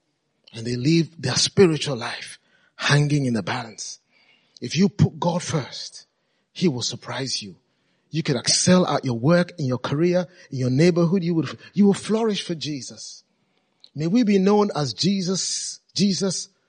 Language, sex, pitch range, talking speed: English, male, 135-185 Hz, 160 wpm